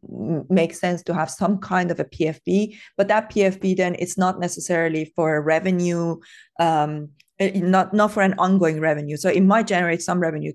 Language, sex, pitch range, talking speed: English, female, 155-185 Hz, 180 wpm